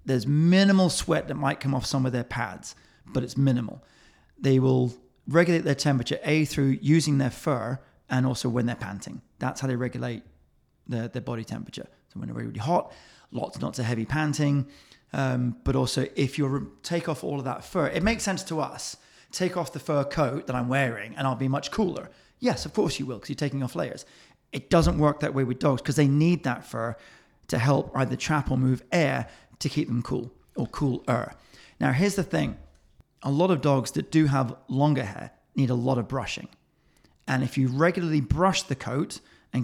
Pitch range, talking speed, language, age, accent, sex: 125-150 Hz, 210 wpm, English, 30-49, British, male